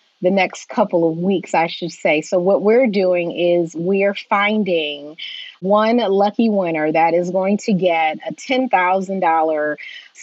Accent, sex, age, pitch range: American, female, 30-49, 175-225 Hz